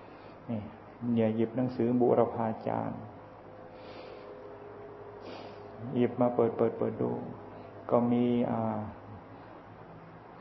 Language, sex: Thai, male